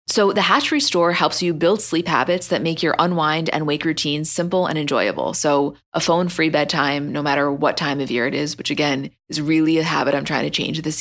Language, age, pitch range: English, 20-39, 150-175 Hz